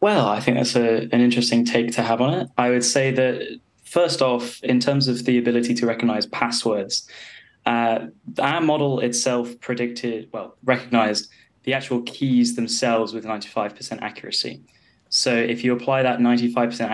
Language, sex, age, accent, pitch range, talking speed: English, male, 10-29, British, 115-130 Hz, 165 wpm